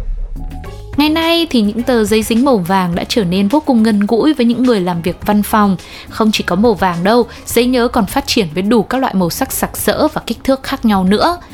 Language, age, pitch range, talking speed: Vietnamese, 20-39, 200-260 Hz, 250 wpm